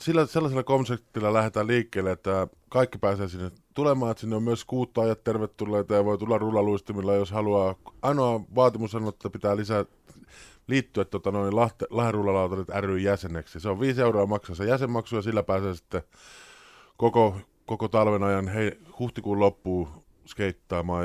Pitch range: 100-120 Hz